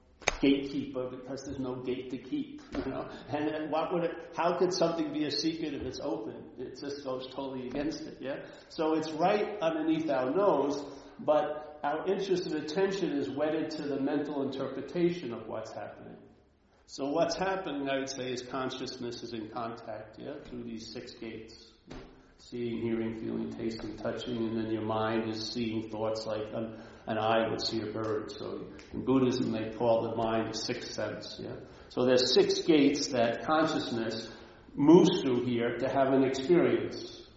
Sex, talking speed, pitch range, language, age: male, 175 wpm, 115-155 Hz, English, 50-69